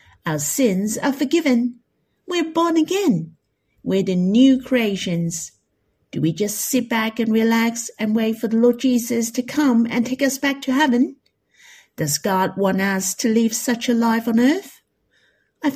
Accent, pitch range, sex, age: British, 195-260 Hz, female, 50-69